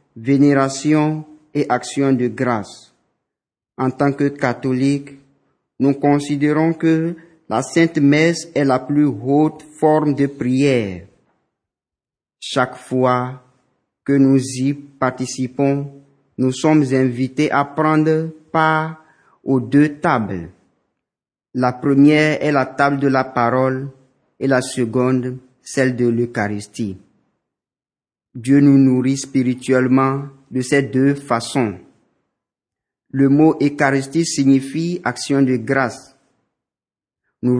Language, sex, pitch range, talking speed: French, male, 130-145 Hz, 105 wpm